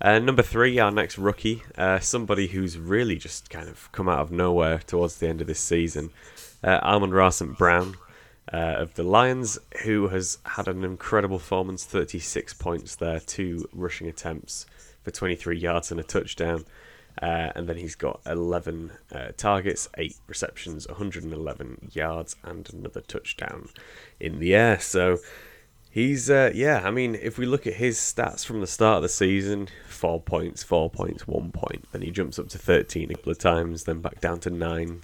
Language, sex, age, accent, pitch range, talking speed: English, male, 20-39, British, 85-105 Hz, 180 wpm